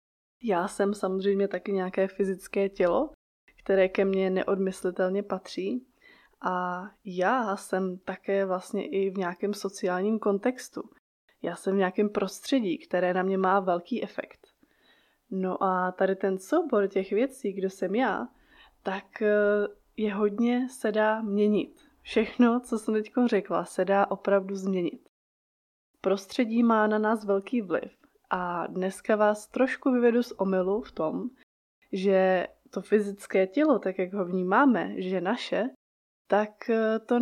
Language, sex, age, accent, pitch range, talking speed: Czech, female, 20-39, native, 190-225 Hz, 140 wpm